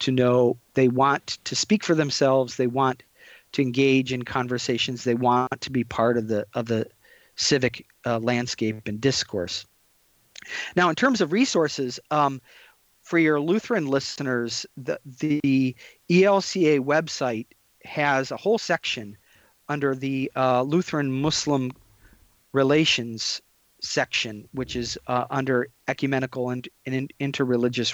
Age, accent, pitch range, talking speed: 40-59, American, 125-160 Hz, 130 wpm